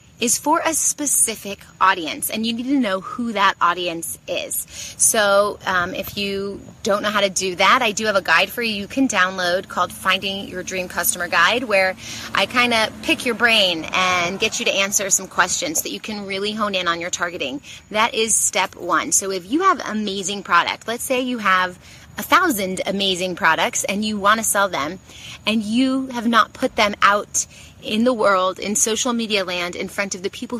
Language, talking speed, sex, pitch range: English, 210 wpm, female, 185-230 Hz